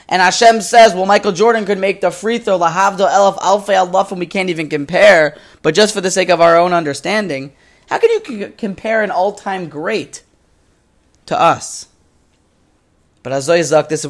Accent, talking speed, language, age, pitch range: American, 165 wpm, English, 20-39, 155-250 Hz